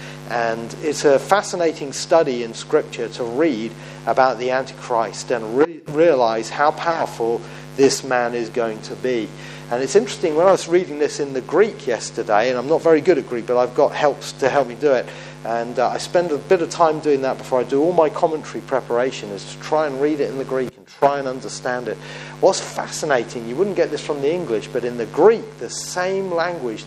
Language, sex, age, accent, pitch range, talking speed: English, male, 40-59, British, 120-155 Hz, 215 wpm